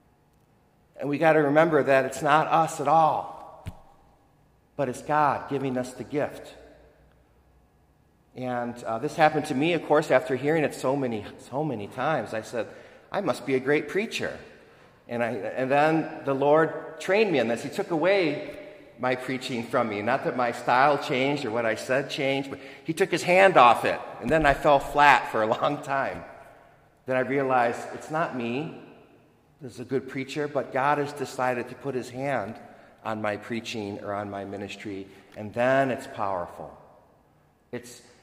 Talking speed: 180 wpm